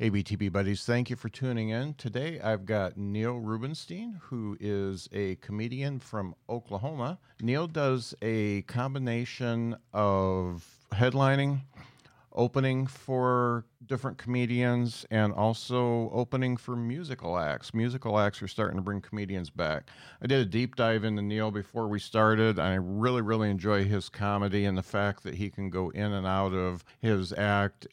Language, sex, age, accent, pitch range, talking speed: English, male, 50-69, American, 100-120 Hz, 155 wpm